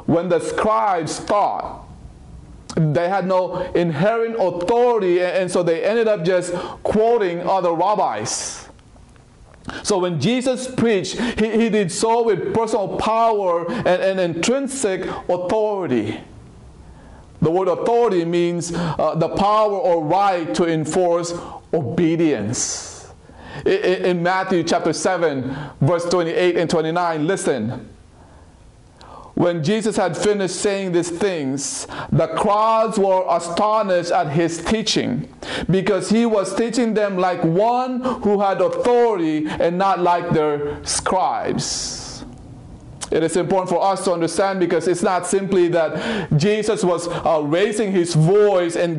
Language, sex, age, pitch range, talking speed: English, male, 40-59, 170-215 Hz, 125 wpm